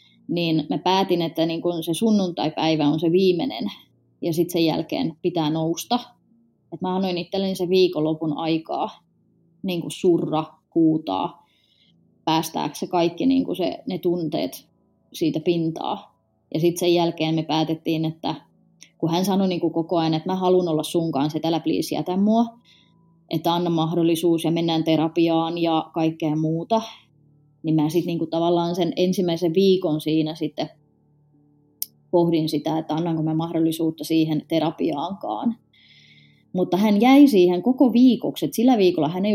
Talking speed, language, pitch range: 145 wpm, Finnish, 160-185 Hz